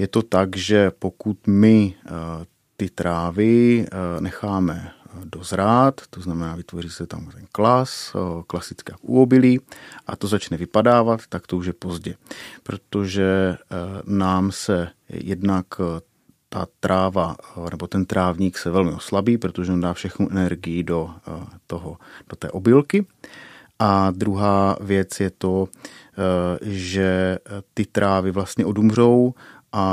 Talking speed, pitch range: 120 wpm, 90-100 Hz